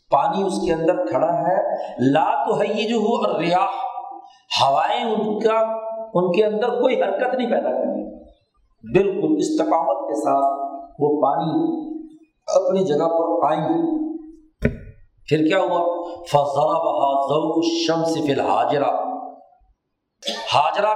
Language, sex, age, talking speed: Urdu, male, 50-69, 105 wpm